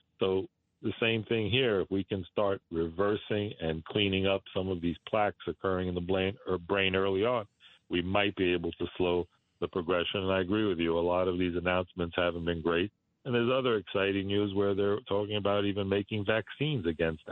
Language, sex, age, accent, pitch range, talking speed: English, male, 50-69, American, 85-95 Hz, 200 wpm